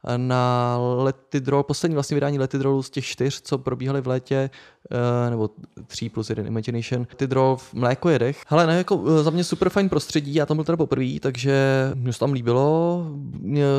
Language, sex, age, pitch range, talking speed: Czech, male, 20-39, 120-135 Hz, 185 wpm